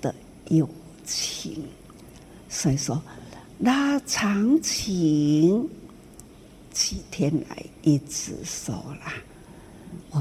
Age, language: 60-79, Chinese